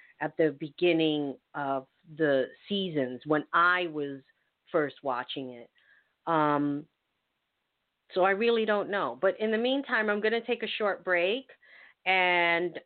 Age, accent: 40-59, American